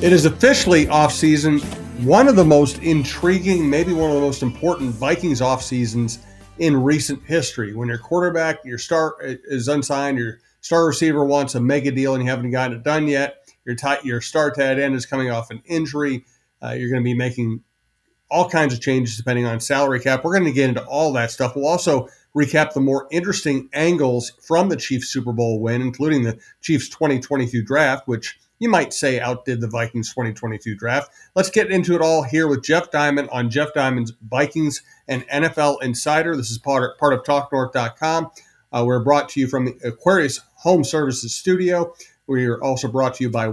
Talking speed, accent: 195 wpm, American